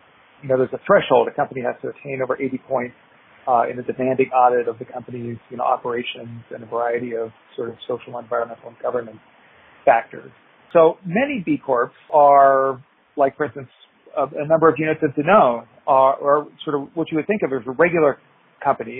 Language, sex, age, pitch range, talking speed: English, male, 40-59, 130-155 Hz, 200 wpm